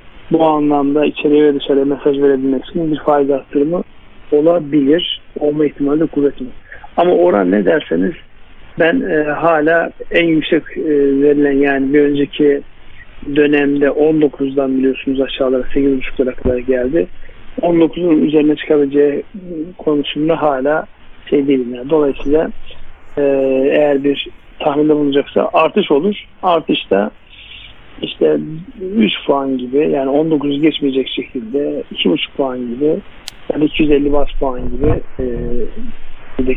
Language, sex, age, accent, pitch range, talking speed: Turkish, male, 50-69, native, 135-155 Hz, 120 wpm